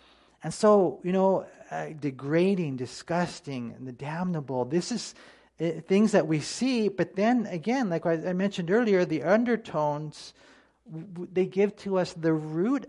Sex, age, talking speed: male, 40-59, 165 wpm